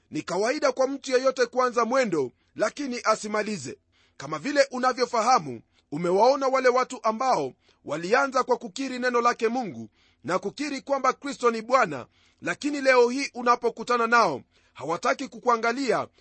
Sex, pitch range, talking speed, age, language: male, 225-265 Hz, 130 wpm, 40-59, Swahili